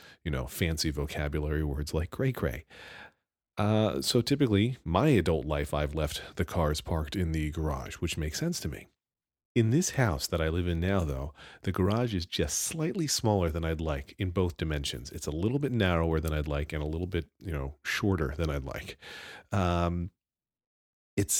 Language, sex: English, male